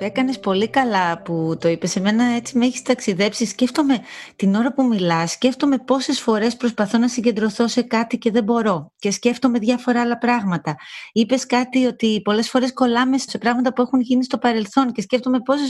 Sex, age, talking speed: female, 30-49, 185 wpm